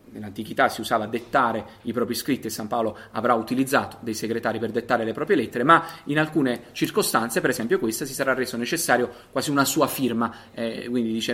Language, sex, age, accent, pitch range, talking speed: Italian, male, 30-49, native, 115-135 Hz, 200 wpm